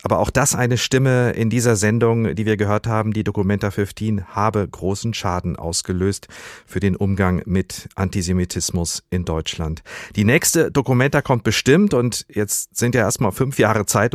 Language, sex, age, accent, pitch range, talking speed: German, male, 50-69, German, 90-115 Hz, 165 wpm